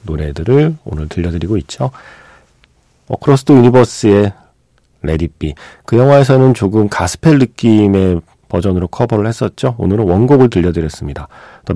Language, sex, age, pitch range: Korean, male, 40-59, 85-125 Hz